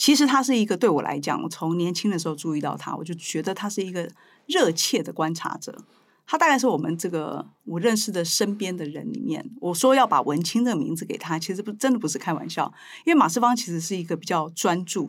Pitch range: 160-220 Hz